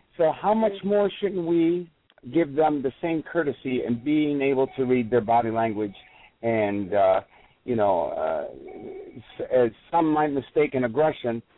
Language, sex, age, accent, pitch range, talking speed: English, male, 60-79, American, 115-155 Hz, 160 wpm